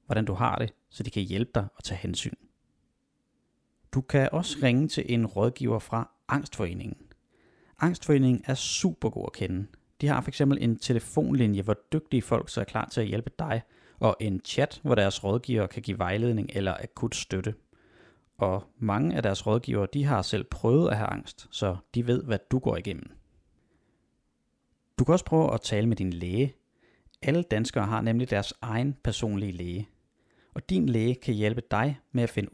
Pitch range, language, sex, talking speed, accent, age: 100-130 Hz, Danish, male, 185 wpm, native, 30-49